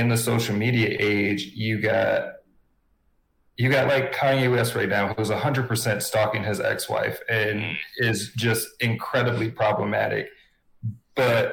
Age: 30-49